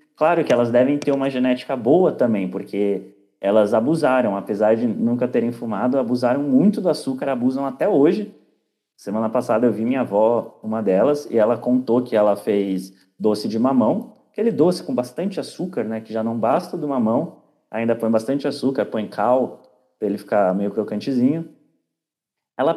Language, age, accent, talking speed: Portuguese, 30-49, Brazilian, 170 wpm